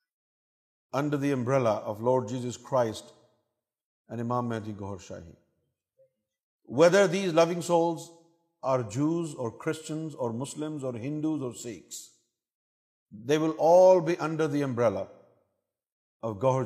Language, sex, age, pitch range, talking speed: Urdu, male, 50-69, 125-185 Hz, 125 wpm